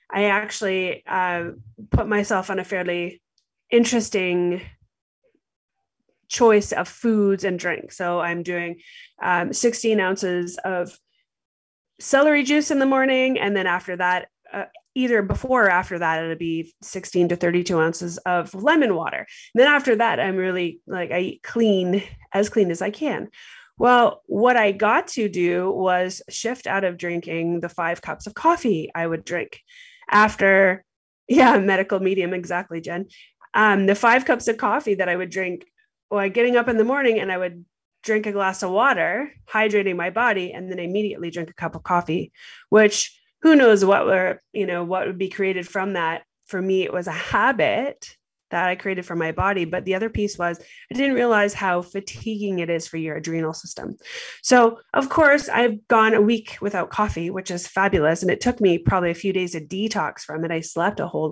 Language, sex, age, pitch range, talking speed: English, female, 20-39, 180-230 Hz, 185 wpm